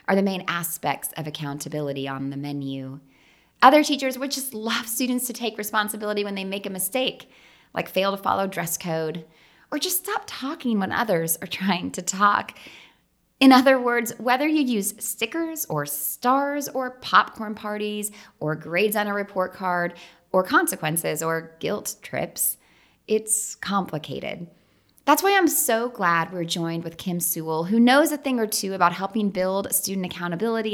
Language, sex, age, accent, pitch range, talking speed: English, female, 20-39, American, 170-225 Hz, 165 wpm